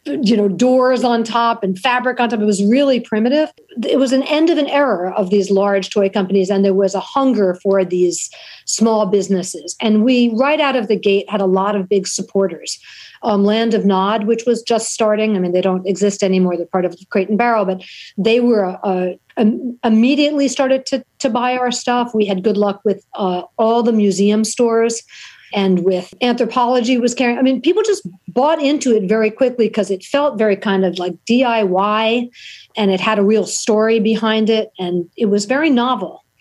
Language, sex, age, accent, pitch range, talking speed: English, female, 50-69, American, 200-245 Hz, 205 wpm